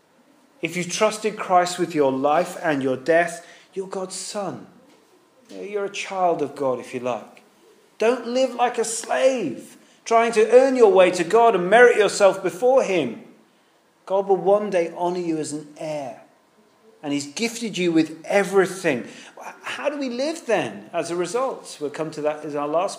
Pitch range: 155-220 Hz